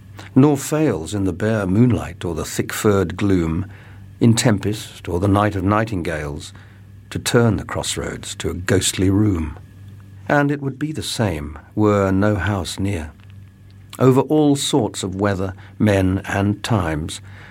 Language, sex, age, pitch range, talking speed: English, male, 50-69, 95-110 Hz, 145 wpm